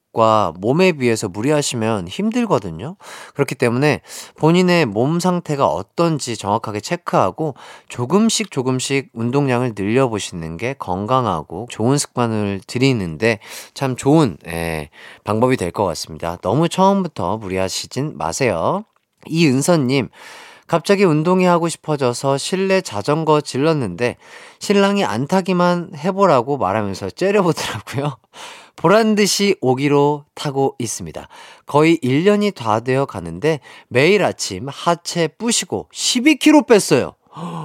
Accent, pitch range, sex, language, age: native, 115-180 Hz, male, Korean, 30-49